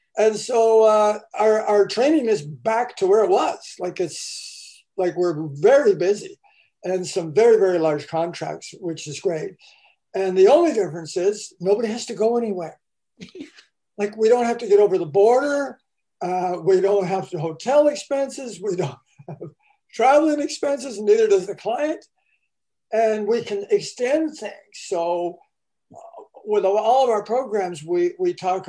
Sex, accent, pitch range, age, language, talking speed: male, American, 175-245 Hz, 50-69, English, 160 wpm